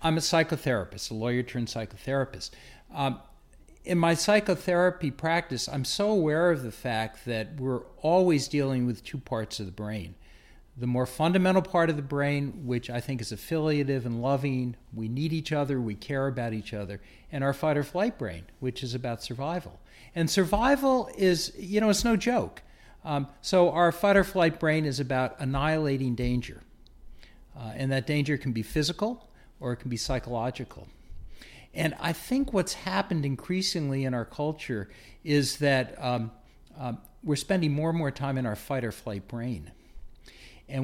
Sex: male